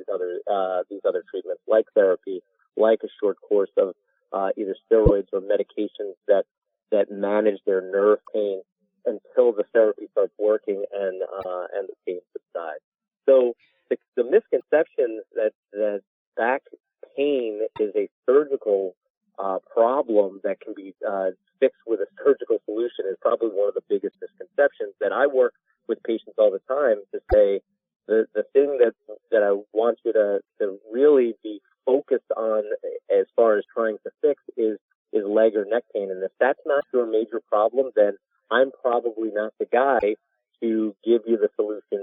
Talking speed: 165 wpm